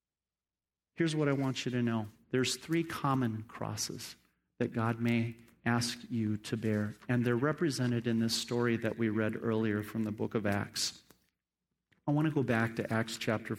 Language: English